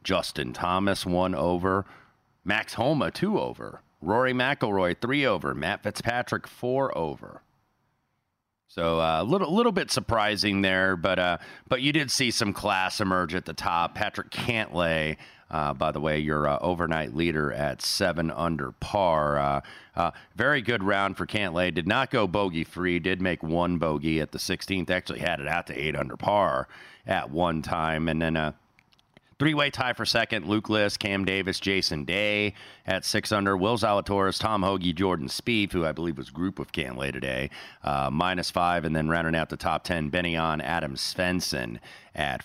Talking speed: 175 wpm